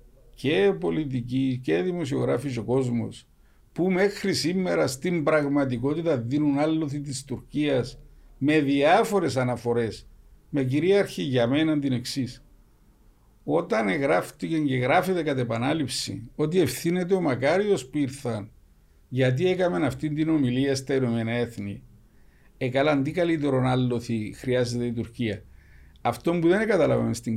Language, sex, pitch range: Greek, male, 120-150 Hz